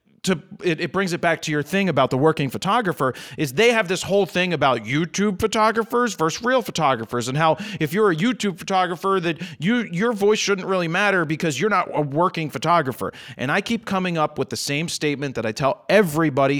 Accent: American